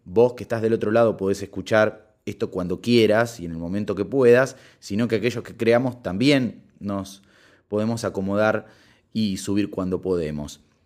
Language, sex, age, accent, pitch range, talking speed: Spanish, male, 20-39, Argentinian, 100-130 Hz, 165 wpm